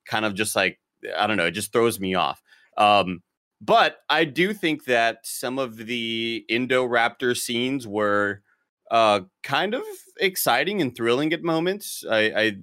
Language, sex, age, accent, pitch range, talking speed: English, male, 30-49, American, 100-125 Hz, 160 wpm